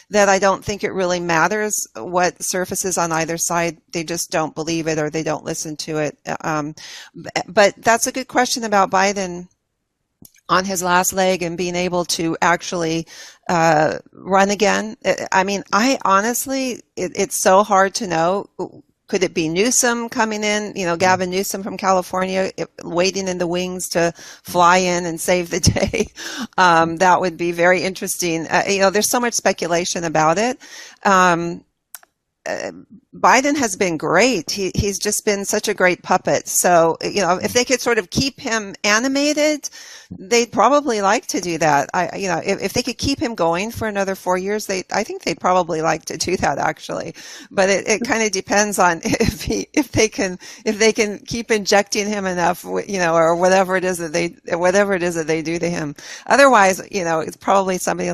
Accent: American